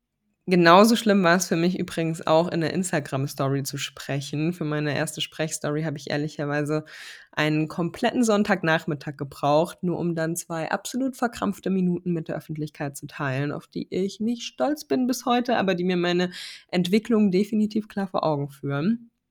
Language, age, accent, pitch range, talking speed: German, 20-39, German, 155-195 Hz, 170 wpm